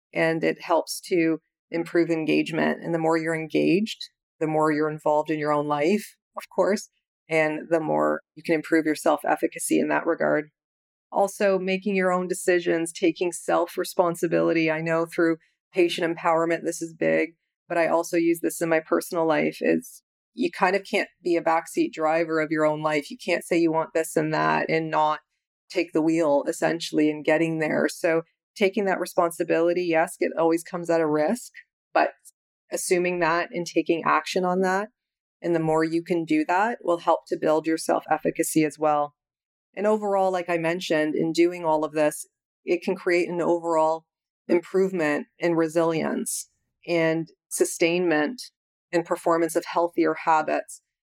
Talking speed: 170 wpm